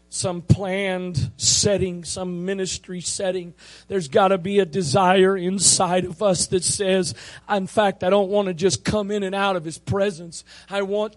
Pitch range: 185-225 Hz